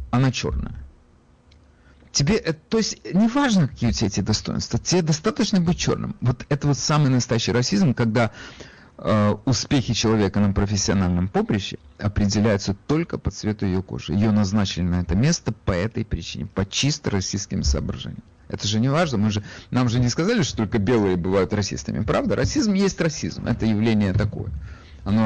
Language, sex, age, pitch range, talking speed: Russian, male, 40-59, 95-125 Hz, 165 wpm